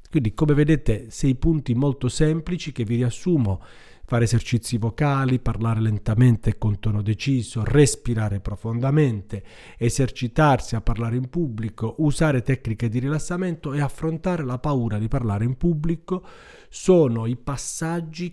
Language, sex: Italian, male